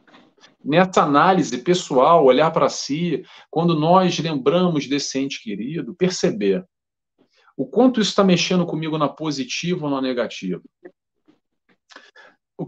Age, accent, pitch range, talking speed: 40-59, Brazilian, 135-180 Hz, 120 wpm